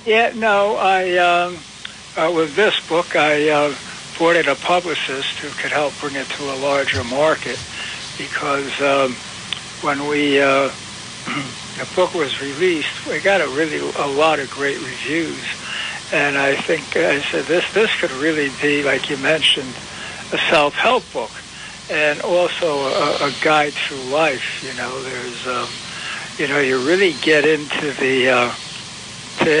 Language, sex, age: English, male, 60-79